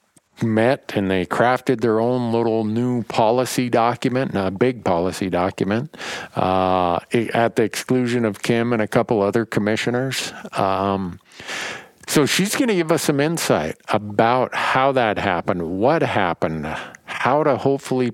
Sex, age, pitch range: male, 50-69, 100-125 Hz